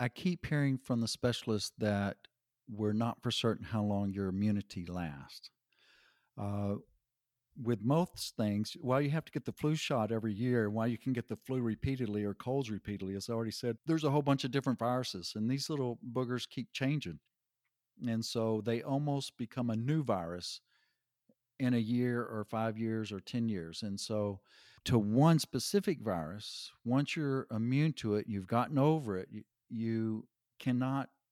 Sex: male